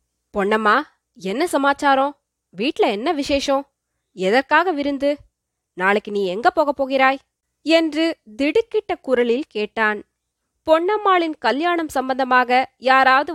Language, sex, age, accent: Tamil, female, 20-39, native